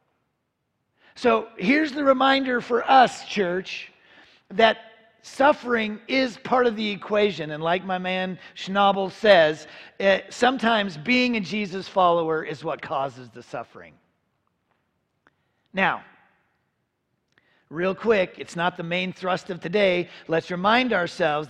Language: English